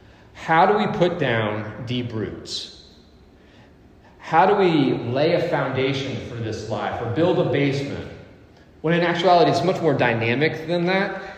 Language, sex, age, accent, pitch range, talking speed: English, male, 30-49, American, 115-160 Hz, 155 wpm